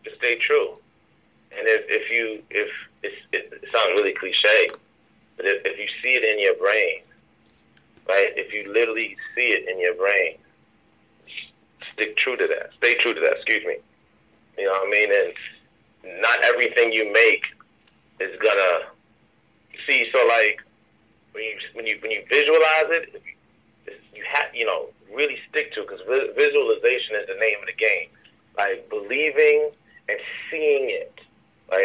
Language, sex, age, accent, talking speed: English, male, 30-49, American, 170 wpm